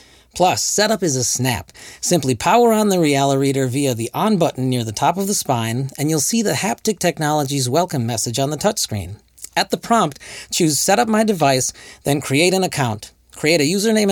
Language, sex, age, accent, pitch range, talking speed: English, male, 40-59, American, 115-175 Hz, 200 wpm